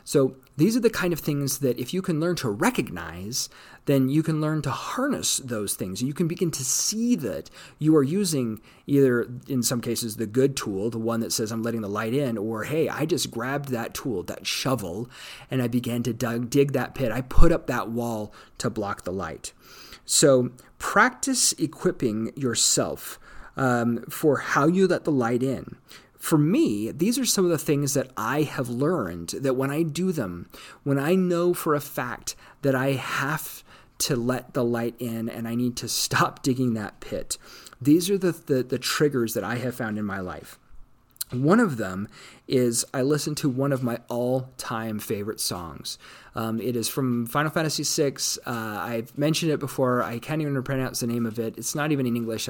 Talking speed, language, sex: 200 wpm, English, male